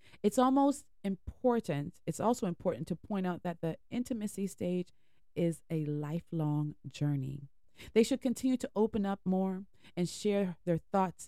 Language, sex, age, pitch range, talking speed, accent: English, female, 30-49, 150-190 Hz, 150 wpm, American